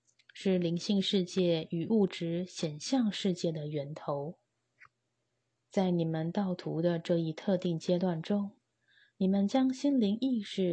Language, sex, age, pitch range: Chinese, female, 20-39, 165-200 Hz